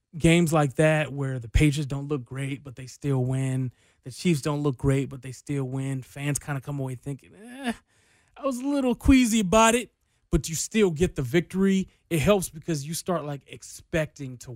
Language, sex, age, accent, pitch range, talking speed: English, male, 20-39, American, 120-150 Hz, 205 wpm